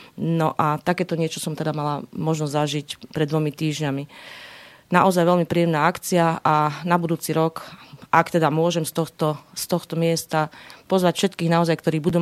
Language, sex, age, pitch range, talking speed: Slovak, female, 30-49, 155-175 Hz, 160 wpm